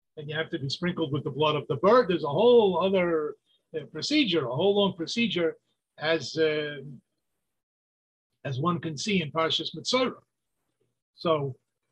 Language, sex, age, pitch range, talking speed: English, male, 50-69, 150-185 Hz, 160 wpm